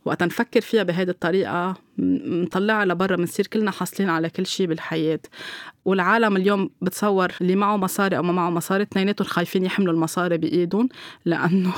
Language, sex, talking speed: Arabic, female, 160 wpm